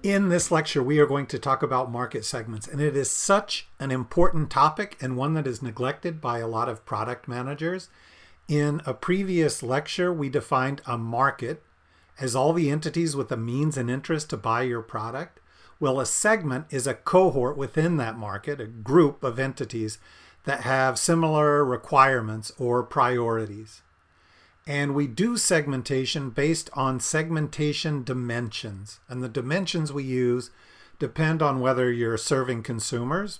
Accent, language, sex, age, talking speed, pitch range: American, English, male, 40-59, 160 wpm, 120-155 Hz